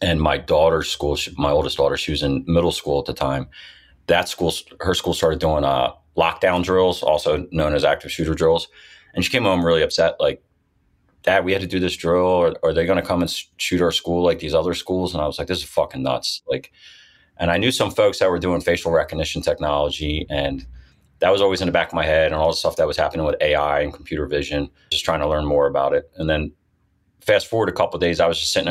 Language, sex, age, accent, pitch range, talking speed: English, male, 30-49, American, 75-90 Hz, 255 wpm